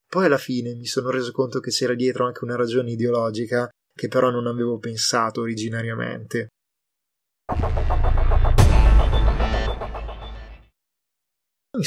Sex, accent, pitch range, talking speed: male, native, 115-130 Hz, 105 wpm